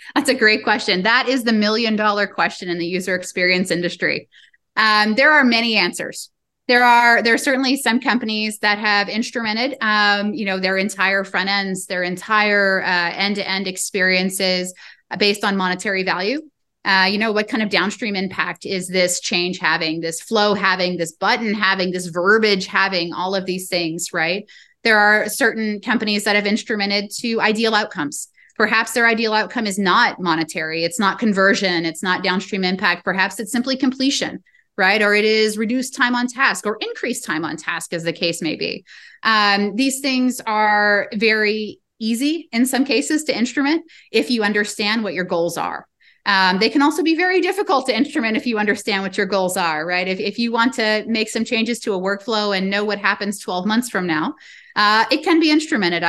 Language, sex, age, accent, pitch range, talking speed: English, female, 20-39, American, 185-230 Hz, 190 wpm